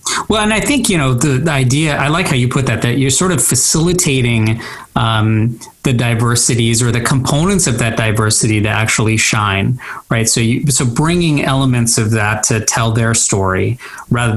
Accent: American